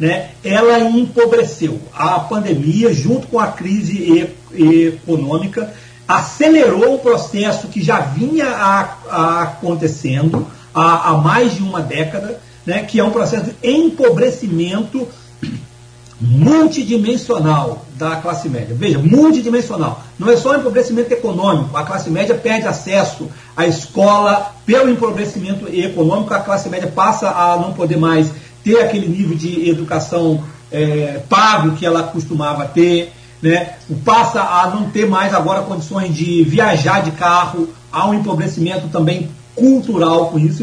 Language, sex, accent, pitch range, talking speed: Portuguese, male, Brazilian, 160-230 Hz, 130 wpm